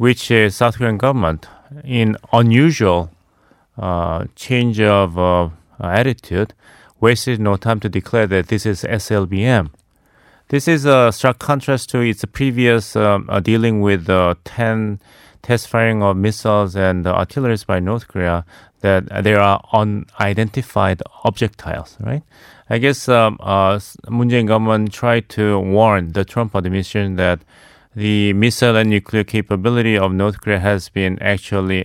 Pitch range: 95-115 Hz